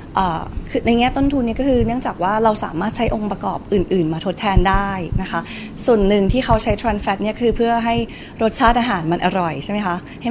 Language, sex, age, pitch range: Thai, female, 20-39, 180-225 Hz